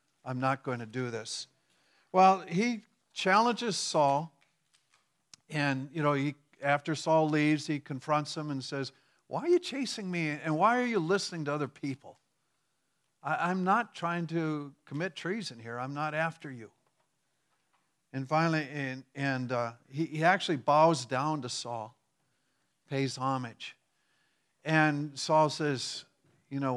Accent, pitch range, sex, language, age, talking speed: American, 130-160 Hz, male, English, 50-69, 150 wpm